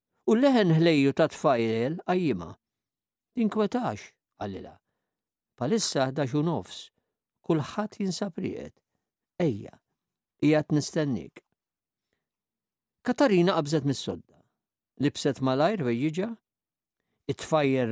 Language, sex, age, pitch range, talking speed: English, male, 50-69, 135-205 Hz, 85 wpm